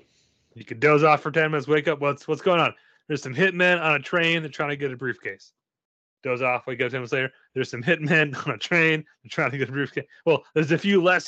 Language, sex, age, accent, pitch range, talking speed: English, male, 30-49, American, 120-155 Hz, 265 wpm